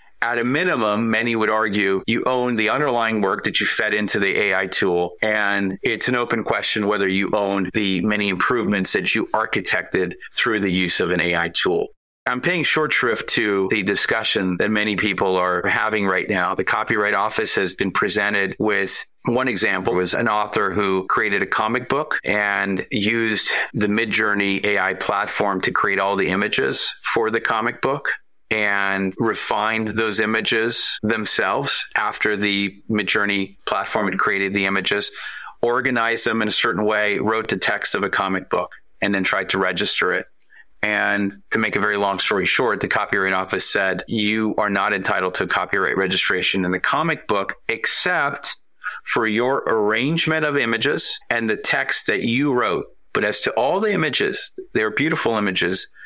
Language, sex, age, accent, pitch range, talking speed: English, male, 30-49, American, 95-110 Hz, 170 wpm